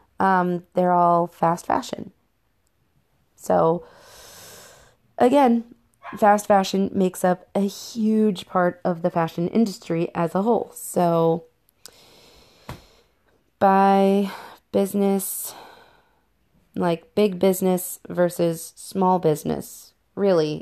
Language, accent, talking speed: English, American, 90 wpm